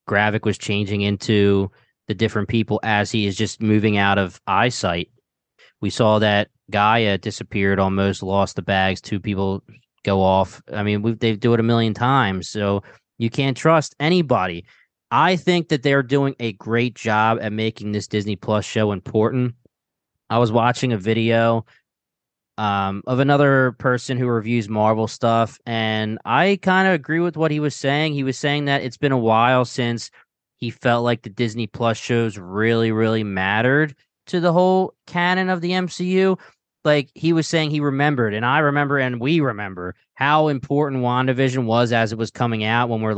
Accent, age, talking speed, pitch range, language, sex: American, 20-39, 180 wpm, 110-145 Hz, English, male